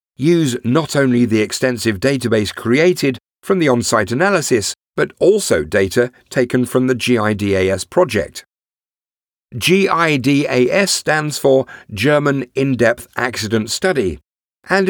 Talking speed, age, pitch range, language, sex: 110 wpm, 50-69, 110-150 Hz, English, male